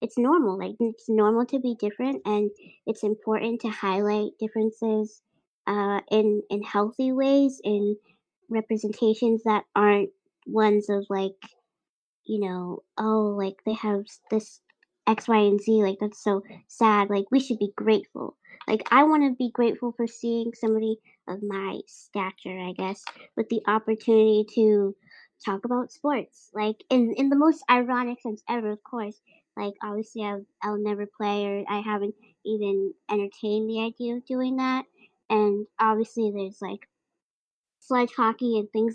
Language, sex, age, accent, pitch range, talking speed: English, male, 30-49, American, 205-235 Hz, 155 wpm